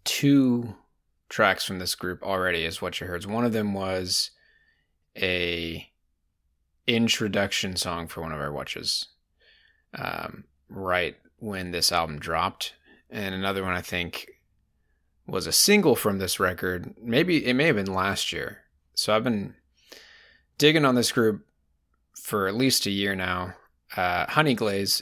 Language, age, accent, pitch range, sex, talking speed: English, 20-39, American, 90-105 Hz, male, 150 wpm